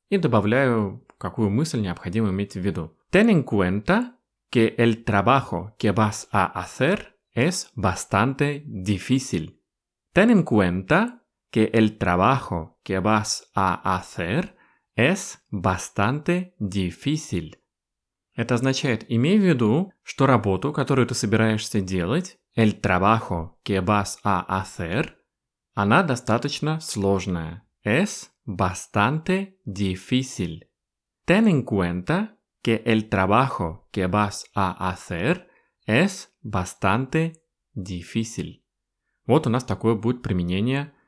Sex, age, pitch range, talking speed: male, 30-49, 95-135 Hz, 90 wpm